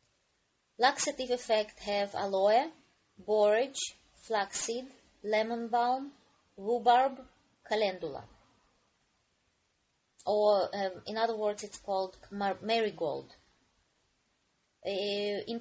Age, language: 20-39, English